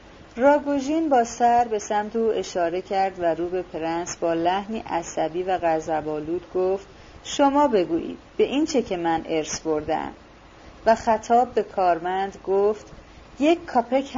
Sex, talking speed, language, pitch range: female, 145 wpm, Persian, 185-270 Hz